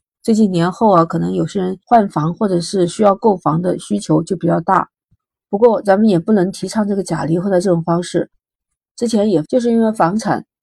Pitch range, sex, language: 170-210 Hz, female, Chinese